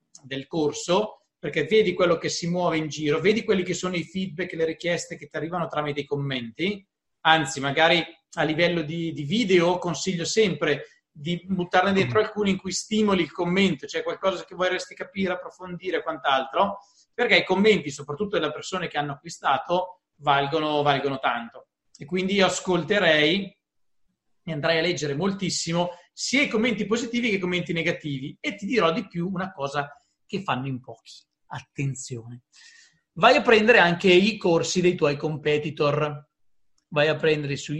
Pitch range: 150-195 Hz